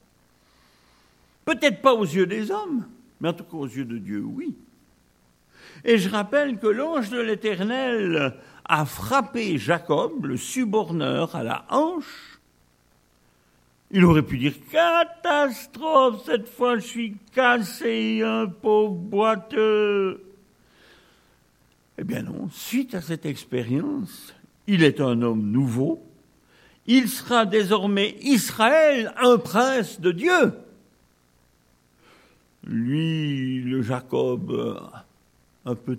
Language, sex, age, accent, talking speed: French, male, 60-79, French, 115 wpm